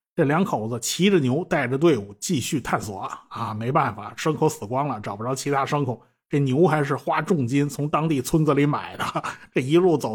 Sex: male